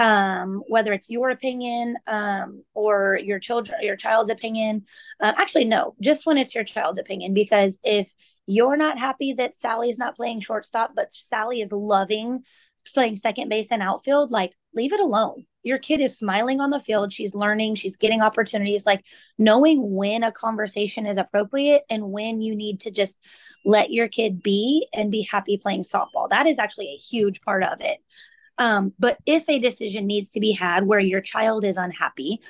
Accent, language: American, English